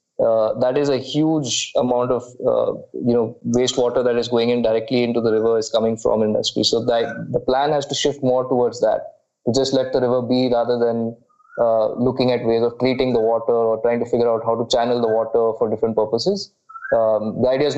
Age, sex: 20-39, male